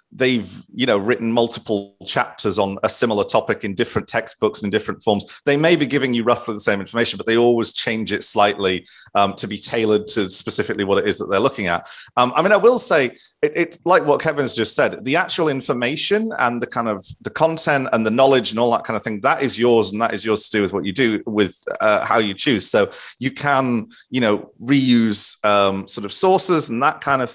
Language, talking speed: English, 235 wpm